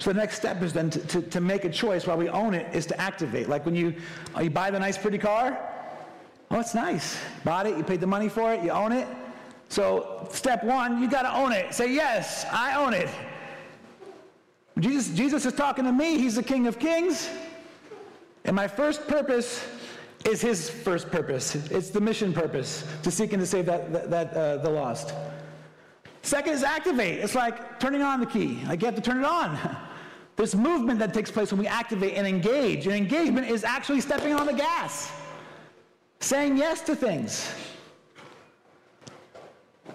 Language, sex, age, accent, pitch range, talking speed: English, male, 40-59, American, 170-255 Hz, 190 wpm